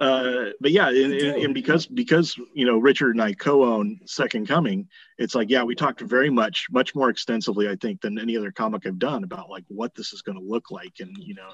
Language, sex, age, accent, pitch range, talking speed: English, male, 30-49, American, 100-130 Hz, 240 wpm